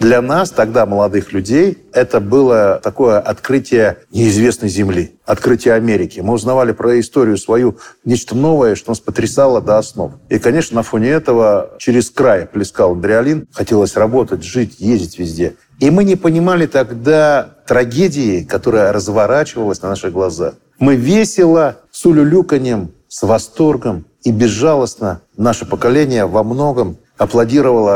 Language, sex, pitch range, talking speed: Russian, male, 100-125 Hz, 135 wpm